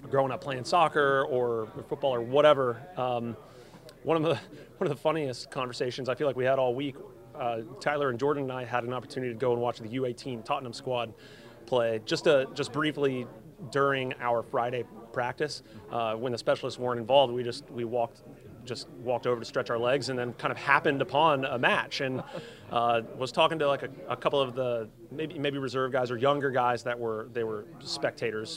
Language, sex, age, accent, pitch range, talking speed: English, male, 30-49, American, 120-150 Hz, 205 wpm